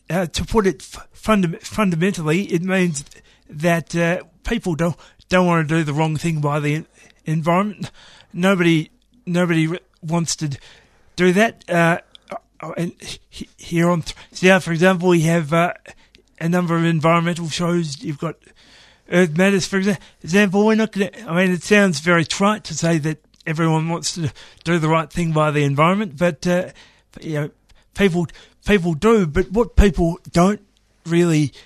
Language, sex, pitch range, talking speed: English, male, 165-190 Hz, 160 wpm